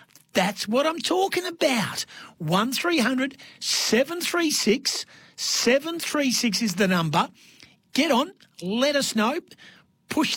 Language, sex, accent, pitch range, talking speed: English, male, Australian, 160-240 Hz, 145 wpm